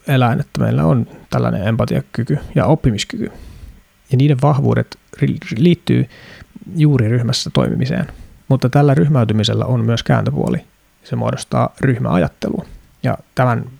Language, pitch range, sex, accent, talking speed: Finnish, 110-135 Hz, male, native, 120 wpm